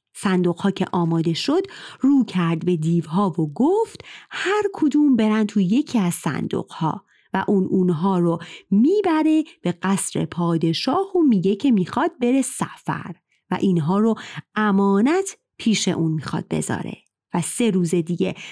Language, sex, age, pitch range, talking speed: Persian, female, 30-49, 170-255 Hz, 140 wpm